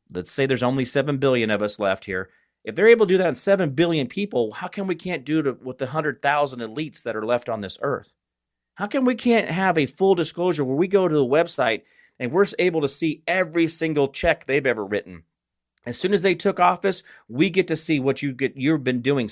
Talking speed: 245 wpm